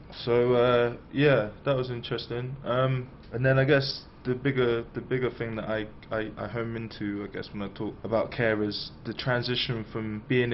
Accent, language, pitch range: British, English, 105-130 Hz